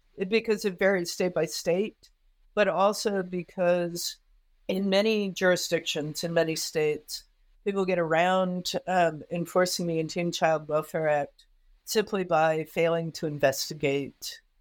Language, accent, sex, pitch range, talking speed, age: English, American, female, 160-190 Hz, 125 wpm, 50-69